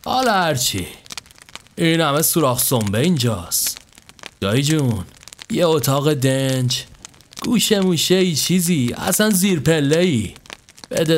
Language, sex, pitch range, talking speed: Persian, male, 120-160 Hz, 115 wpm